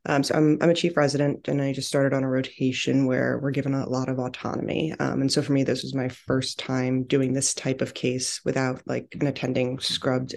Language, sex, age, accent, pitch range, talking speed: English, female, 20-39, American, 130-145 Hz, 235 wpm